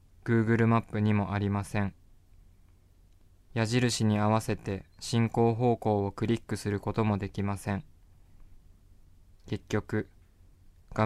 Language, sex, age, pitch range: Japanese, male, 20-39, 90-110 Hz